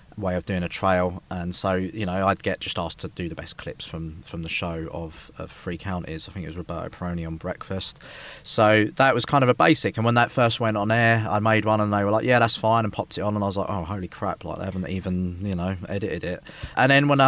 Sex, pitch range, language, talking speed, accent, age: male, 90-110 Hz, English, 280 wpm, British, 20-39